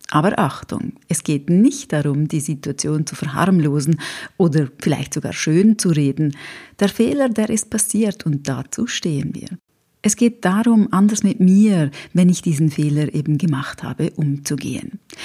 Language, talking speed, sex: German, 155 wpm, female